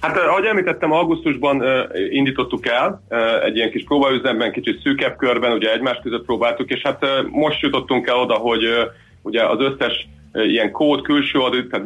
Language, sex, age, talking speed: Hungarian, male, 30-49, 185 wpm